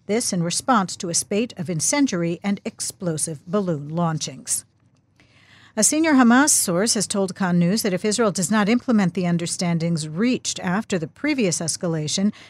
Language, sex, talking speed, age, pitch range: English, female, 160 wpm, 50-69, 165-210 Hz